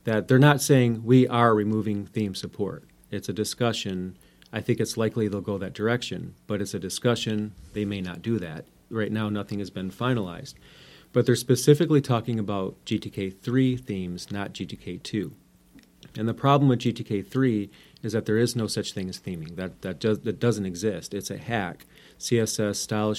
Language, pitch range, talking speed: English, 100-115 Hz, 185 wpm